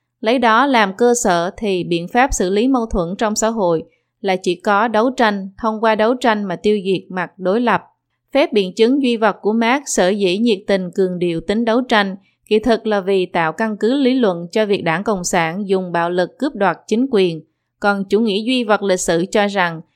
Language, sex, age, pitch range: Vietnamese, female, 20-39, 185-230 Hz